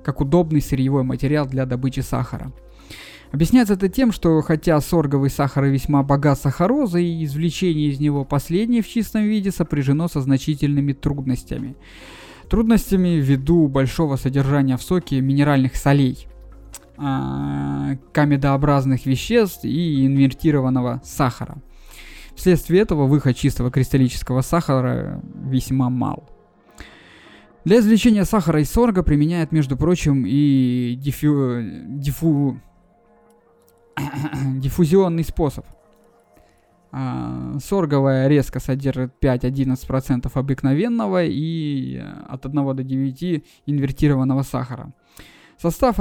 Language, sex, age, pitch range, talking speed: Russian, male, 20-39, 130-165 Hz, 100 wpm